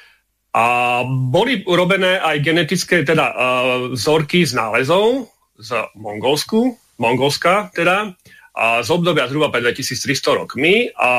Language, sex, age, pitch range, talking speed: Slovak, male, 40-59, 125-170 Hz, 105 wpm